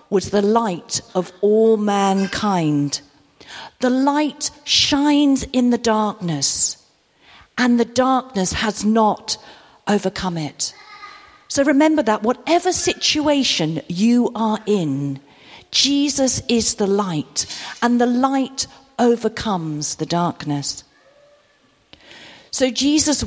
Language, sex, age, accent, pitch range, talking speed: English, female, 50-69, British, 180-285 Hz, 100 wpm